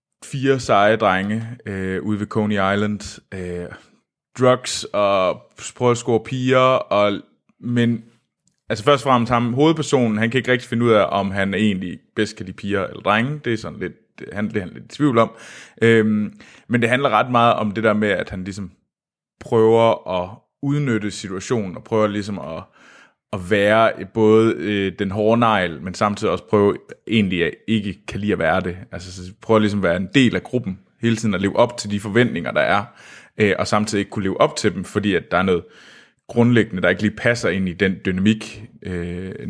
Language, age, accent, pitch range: Danish, 20-39, native, 100-120 Hz